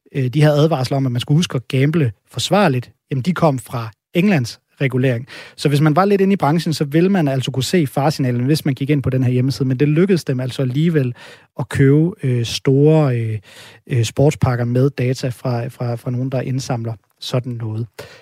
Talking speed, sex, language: 200 wpm, male, Danish